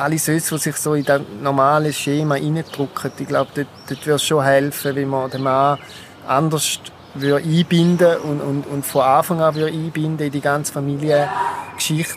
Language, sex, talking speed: German, male, 180 wpm